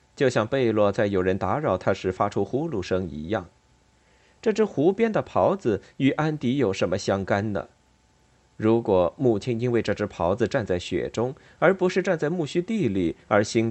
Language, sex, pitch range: Chinese, male, 110-185 Hz